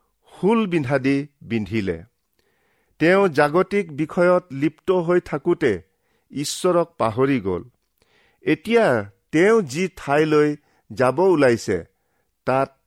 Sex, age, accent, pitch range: male, 50-69, Indian, 115-170 Hz